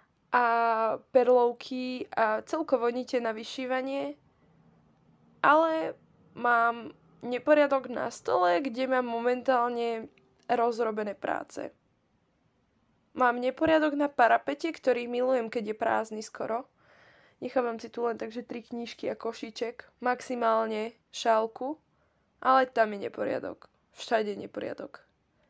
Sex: female